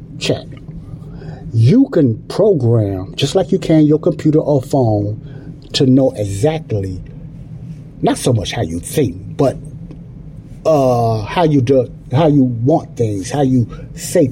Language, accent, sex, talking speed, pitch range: English, American, male, 140 wpm, 125-150 Hz